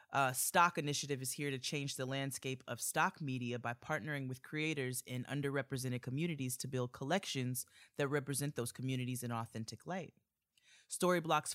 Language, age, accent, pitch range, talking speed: English, 30-49, American, 125-155 Hz, 155 wpm